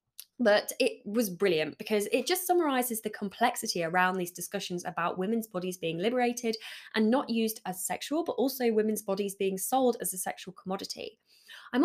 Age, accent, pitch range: 10-29, British, 185-245 Hz